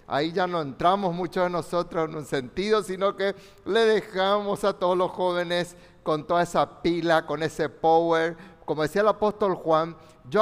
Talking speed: 180 wpm